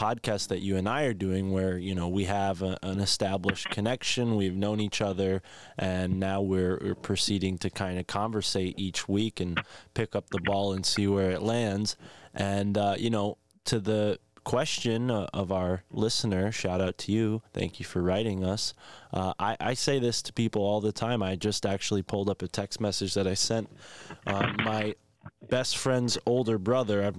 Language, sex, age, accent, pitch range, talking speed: English, male, 20-39, American, 95-115 Hz, 195 wpm